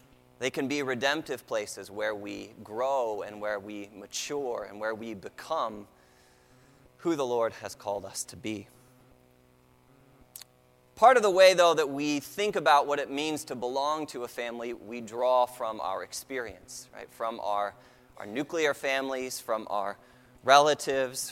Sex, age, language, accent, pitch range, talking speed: male, 20-39, English, American, 105-150 Hz, 155 wpm